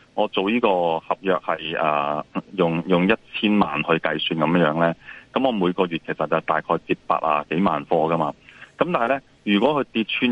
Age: 20-39